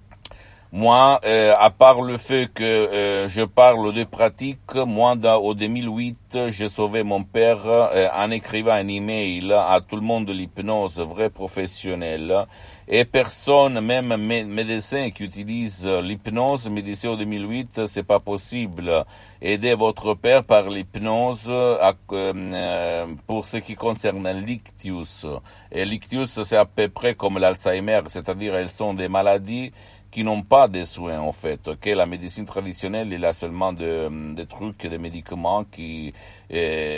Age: 60-79